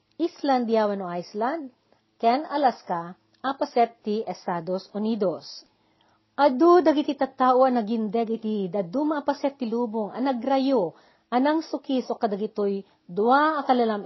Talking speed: 110 wpm